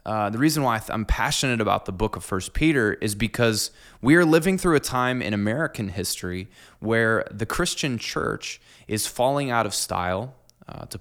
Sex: male